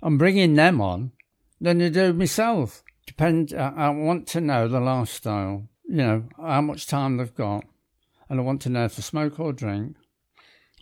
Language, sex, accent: English, male, British